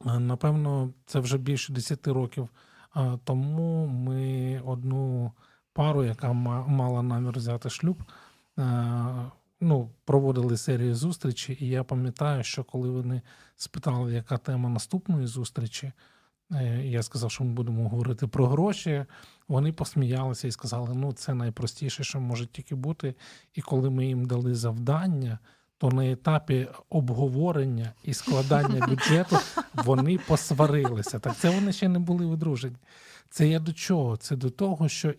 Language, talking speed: Ukrainian, 135 wpm